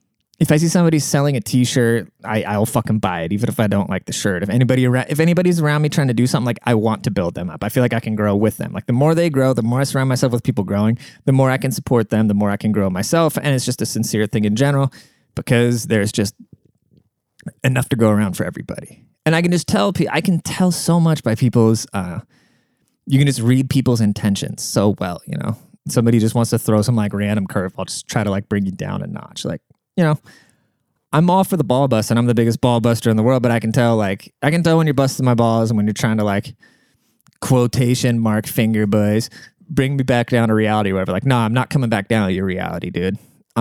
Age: 20-39